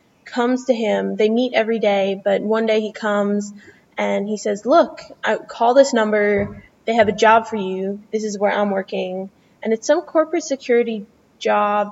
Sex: female